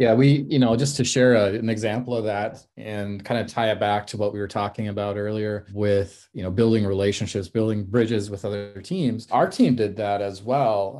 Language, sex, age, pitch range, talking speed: English, male, 30-49, 95-115 Hz, 225 wpm